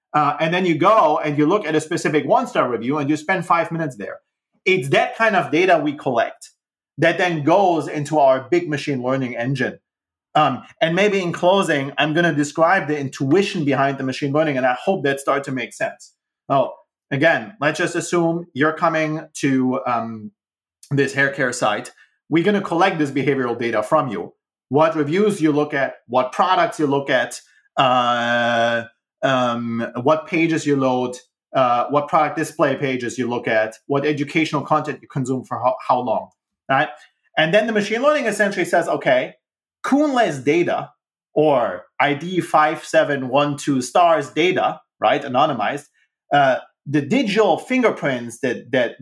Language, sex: English, male